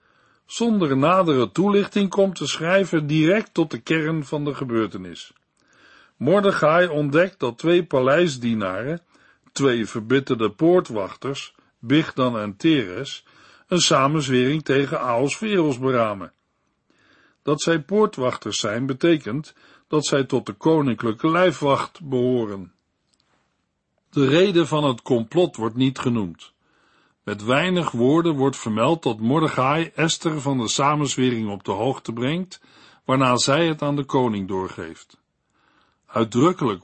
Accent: Dutch